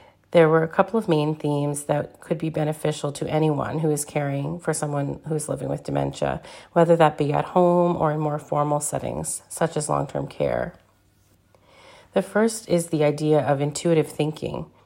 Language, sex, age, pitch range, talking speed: English, female, 40-59, 145-170 Hz, 180 wpm